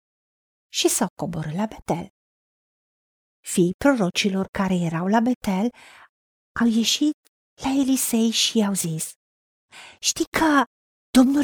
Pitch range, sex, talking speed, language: 200-305 Hz, female, 110 wpm, Romanian